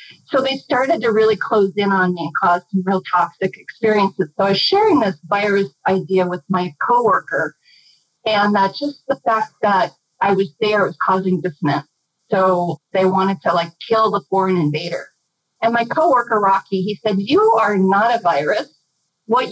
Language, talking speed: English, 180 wpm